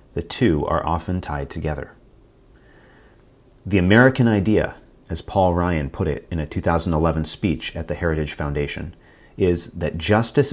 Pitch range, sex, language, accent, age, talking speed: 80-105 Hz, male, English, American, 30-49, 140 wpm